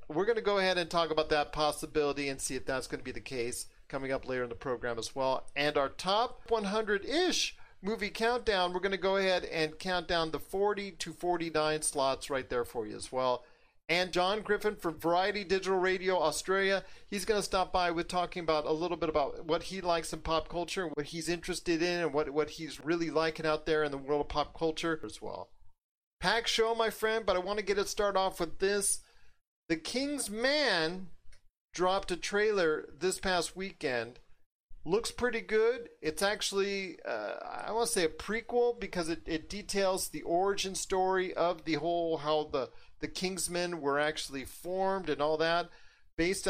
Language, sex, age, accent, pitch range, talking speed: English, male, 40-59, American, 150-190 Hz, 200 wpm